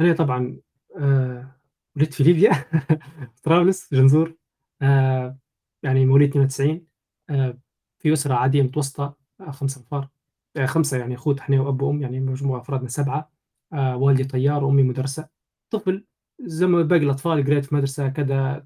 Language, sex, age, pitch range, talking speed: Arabic, male, 20-39, 135-165 Hz, 125 wpm